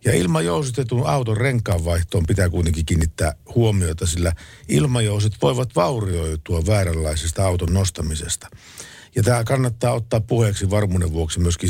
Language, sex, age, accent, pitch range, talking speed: Finnish, male, 50-69, native, 85-115 Hz, 120 wpm